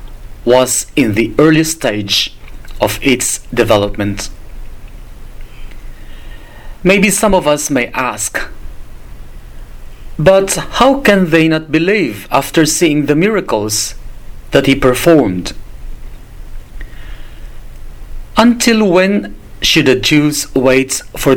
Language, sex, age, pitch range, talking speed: English, male, 40-59, 105-160 Hz, 95 wpm